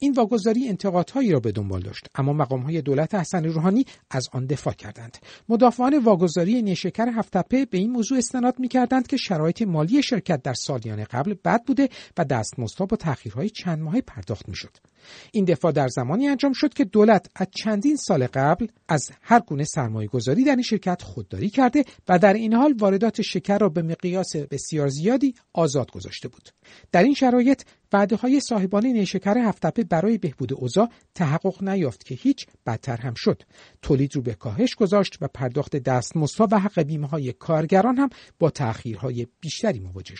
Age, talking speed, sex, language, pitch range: 50-69, 170 wpm, male, Persian, 140-225 Hz